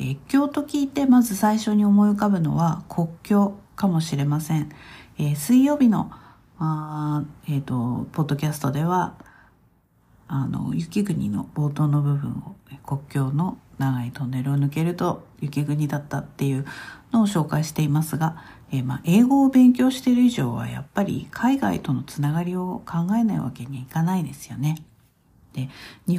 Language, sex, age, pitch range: Japanese, female, 50-69, 140-200 Hz